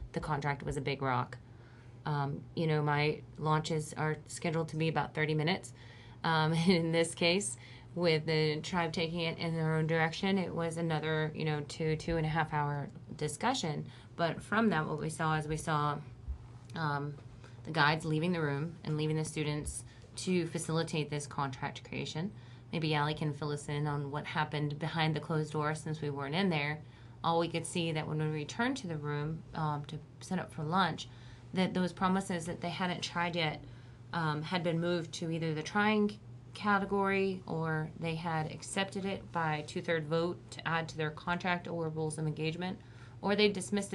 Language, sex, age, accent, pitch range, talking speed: English, female, 30-49, American, 145-170 Hz, 190 wpm